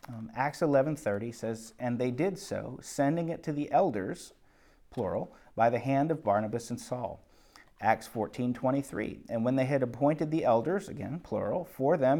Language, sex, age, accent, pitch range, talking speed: English, male, 40-59, American, 115-145 Hz, 165 wpm